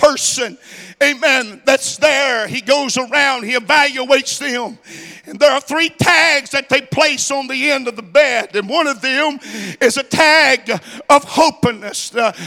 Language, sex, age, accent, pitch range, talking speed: English, male, 50-69, American, 250-290 Hz, 160 wpm